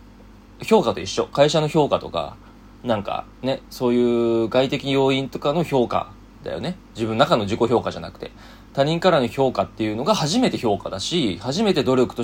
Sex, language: male, Japanese